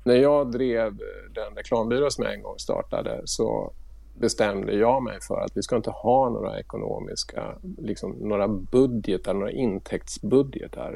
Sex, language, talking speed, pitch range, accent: male, Swedish, 150 wpm, 105-155 Hz, Norwegian